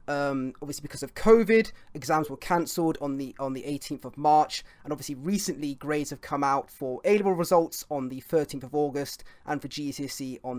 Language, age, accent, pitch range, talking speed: English, 30-49, British, 145-190 Hz, 200 wpm